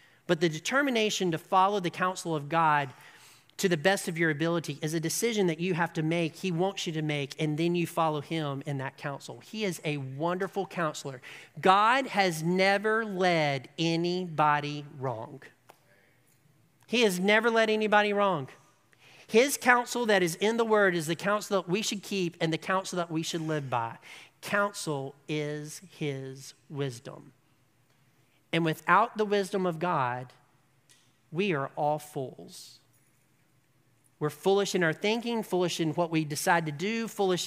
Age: 40-59